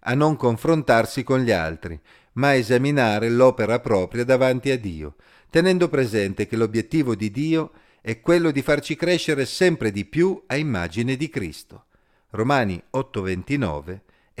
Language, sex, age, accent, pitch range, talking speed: Italian, male, 40-59, native, 100-135 Hz, 140 wpm